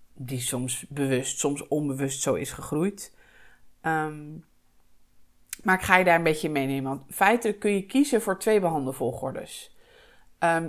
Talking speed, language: 155 wpm, English